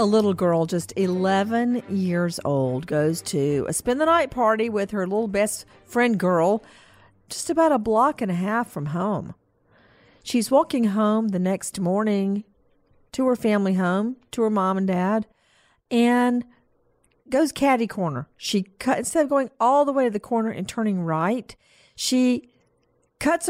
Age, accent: 50-69, American